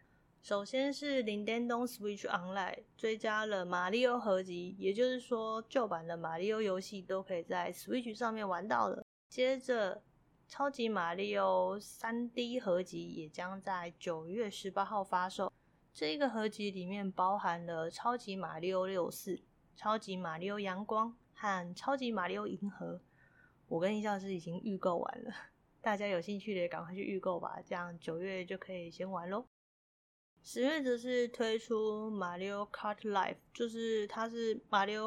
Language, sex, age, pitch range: Chinese, female, 20-39, 185-225 Hz